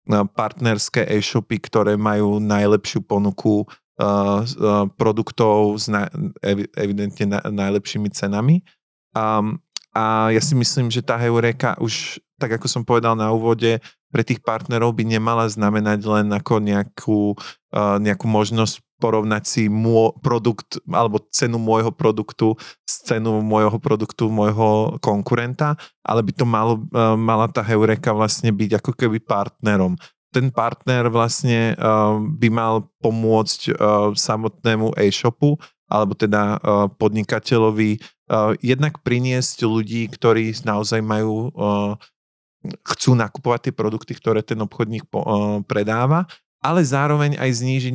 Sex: male